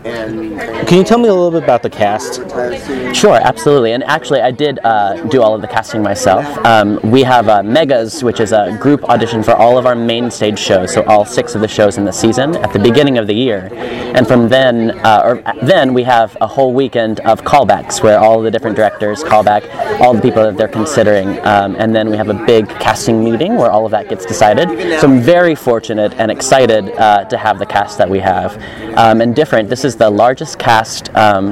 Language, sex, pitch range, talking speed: English, male, 105-125 Hz, 230 wpm